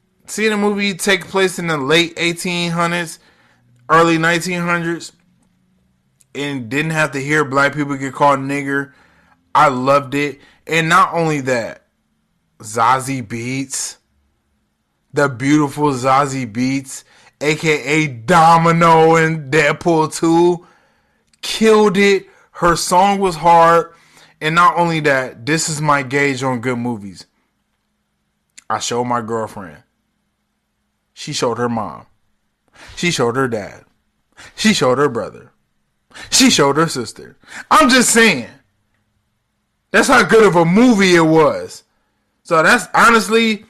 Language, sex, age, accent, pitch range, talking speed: English, male, 20-39, American, 135-175 Hz, 125 wpm